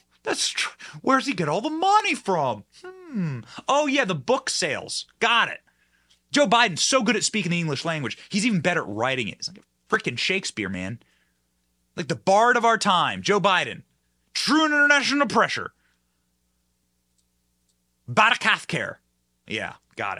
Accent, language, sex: American, English, male